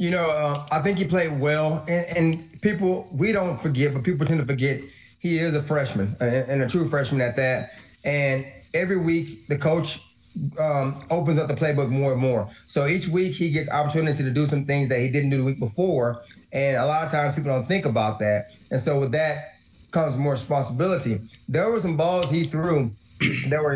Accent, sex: American, male